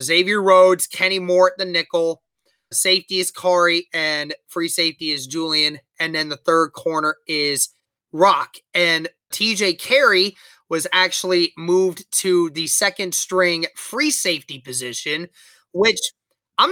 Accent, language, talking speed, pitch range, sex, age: American, English, 135 wpm, 155-185 Hz, male, 20-39